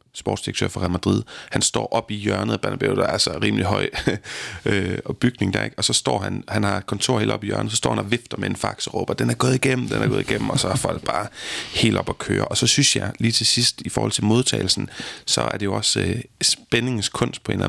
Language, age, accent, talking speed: Danish, 30-49, native, 270 wpm